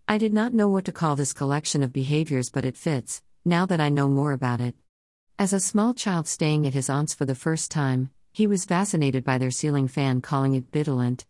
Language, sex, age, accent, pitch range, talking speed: English, female, 50-69, American, 130-165 Hz, 230 wpm